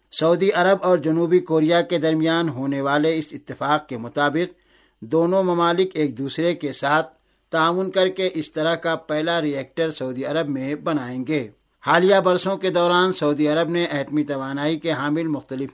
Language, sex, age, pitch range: Urdu, male, 60-79, 145-170 Hz